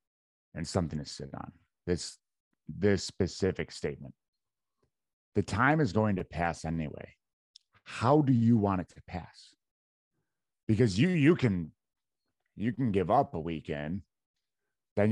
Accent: American